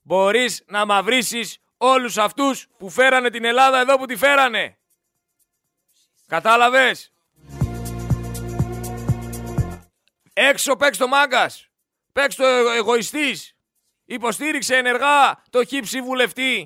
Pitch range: 210-255 Hz